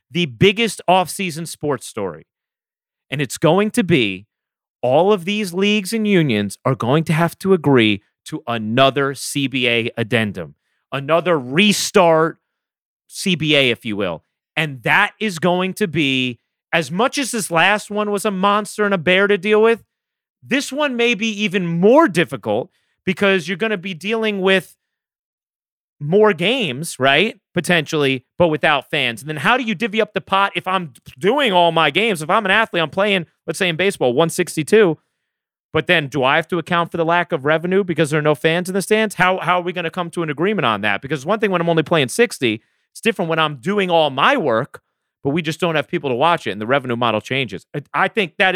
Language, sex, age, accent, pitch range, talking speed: English, male, 30-49, American, 150-205 Hz, 205 wpm